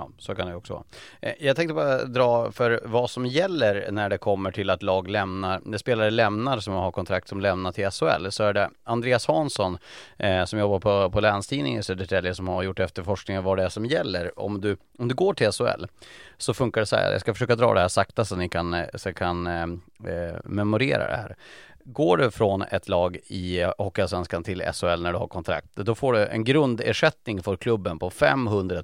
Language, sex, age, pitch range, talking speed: Swedish, male, 30-49, 95-115 Hz, 210 wpm